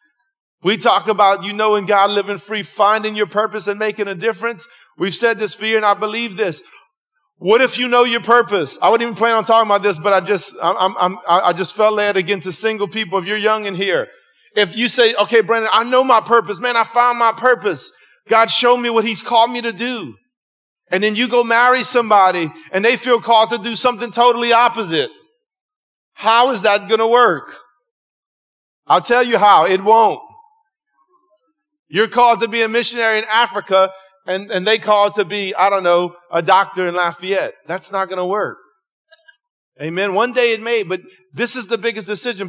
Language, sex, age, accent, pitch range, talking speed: English, male, 30-49, American, 190-240 Hz, 200 wpm